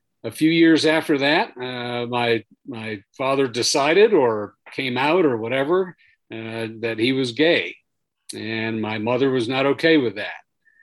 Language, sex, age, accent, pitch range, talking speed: English, male, 50-69, American, 115-135 Hz, 155 wpm